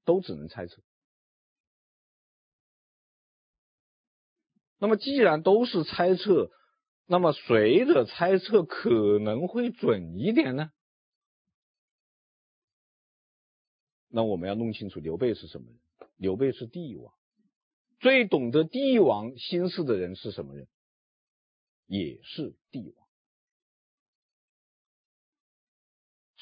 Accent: native